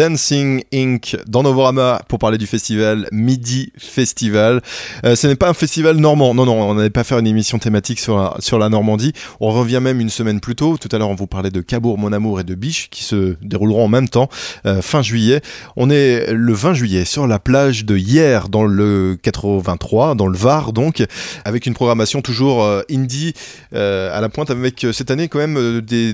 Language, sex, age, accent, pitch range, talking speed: French, male, 20-39, French, 105-130 Hz, 220 wpm